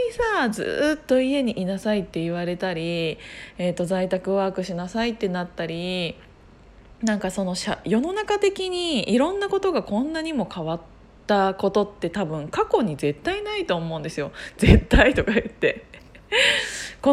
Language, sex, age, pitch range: Japanese, female, 20-39, 175-280 Hz